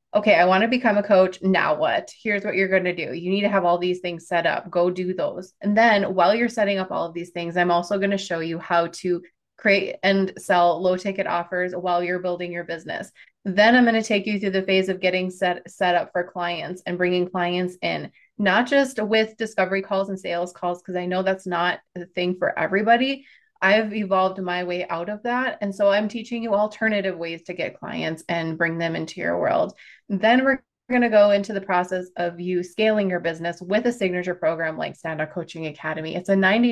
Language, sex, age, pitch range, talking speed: English, female, 20-39, 175-210 Hz, 225 wpm